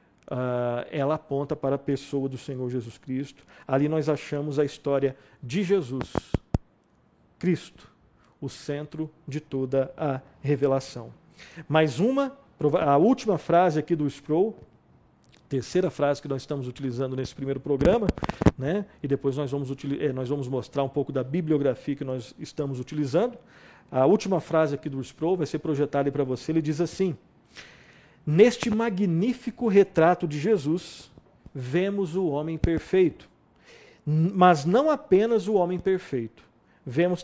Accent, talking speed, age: Brazilian, 145 wpm, 50-69